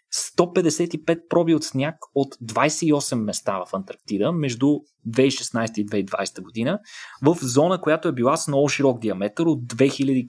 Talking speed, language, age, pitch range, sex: 145 wpm, Bulgarian, 20-39, 115-160 Hz, male